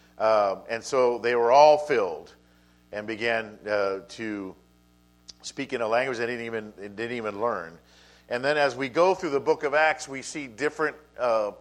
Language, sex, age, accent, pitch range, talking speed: English, male, 50-69, American, 85-135 Hz, 180 wpm